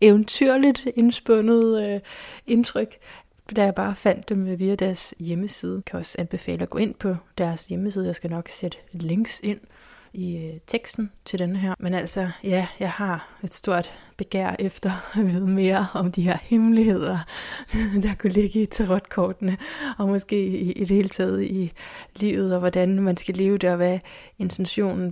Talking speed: 165 wpm